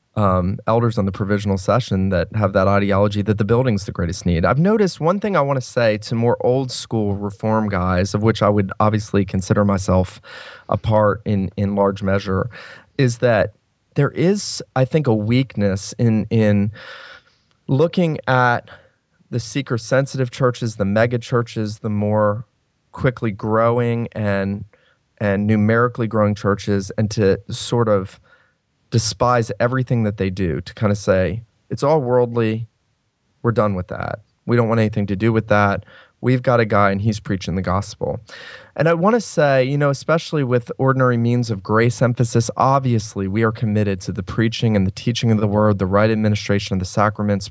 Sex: male